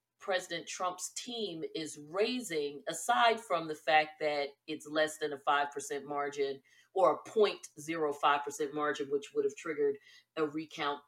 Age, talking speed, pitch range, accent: 40-59, 140 wpm, 140-180 Hz, American